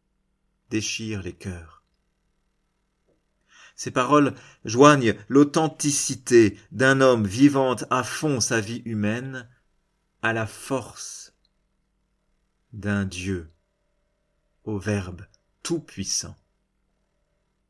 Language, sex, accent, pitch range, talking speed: French, male, French, 105-135 Hz, 80 wpm